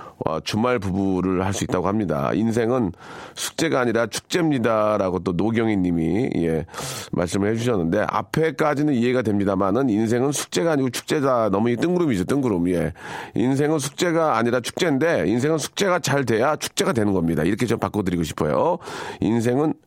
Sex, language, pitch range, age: male, Korean, 100-155 Hz, 40-59